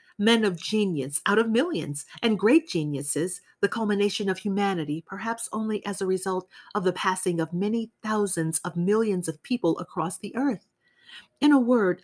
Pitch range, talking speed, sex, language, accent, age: 170-245 Hz, 170 wpm, female, English, American, 40-59